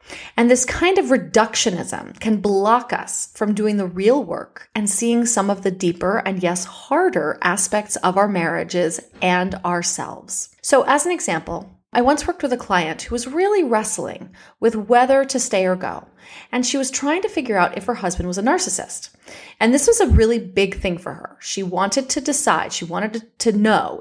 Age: 30-49